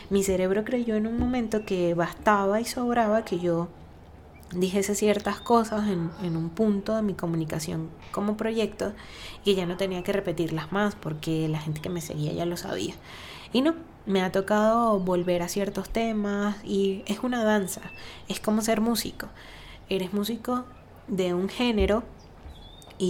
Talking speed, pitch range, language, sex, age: 165 wpm, 175-215 Hz, Spanish, female, 20-39